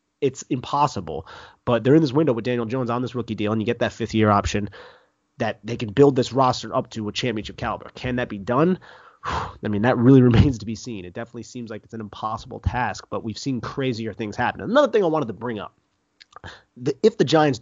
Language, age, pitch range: English, 30-49, 105-135 Hz